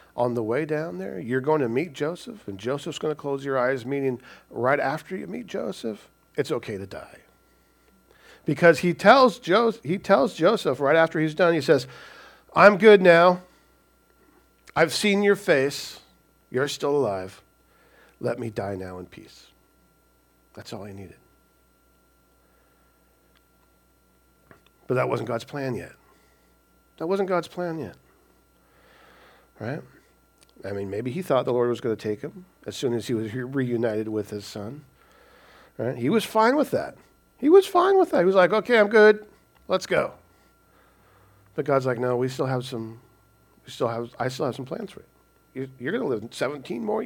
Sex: male